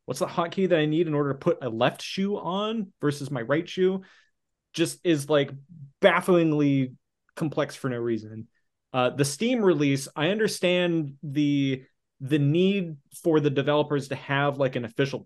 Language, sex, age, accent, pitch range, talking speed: English, male, 20-39, American, 125-170 Hz, 170 wpm